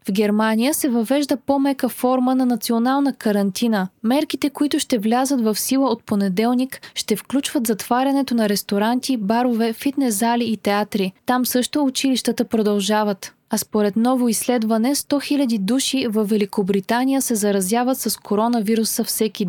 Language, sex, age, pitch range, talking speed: Bulgarian, female, 20-39, 215-255 Hz, 140 wpm